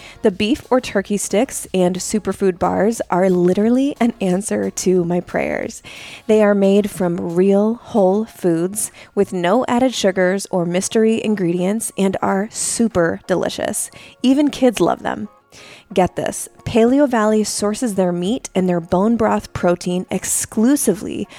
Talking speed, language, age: 140 wpm, English, 20-39